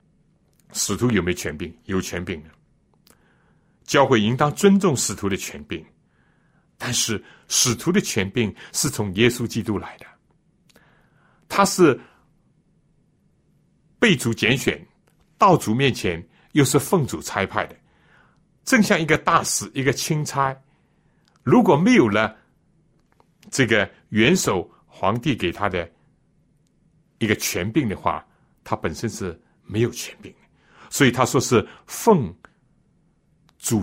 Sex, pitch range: male, 105-165 Hz